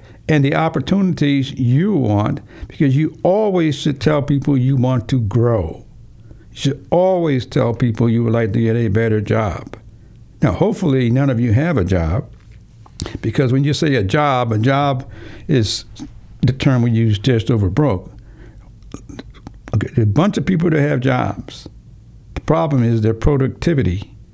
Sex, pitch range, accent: male, 110-135 Hz, American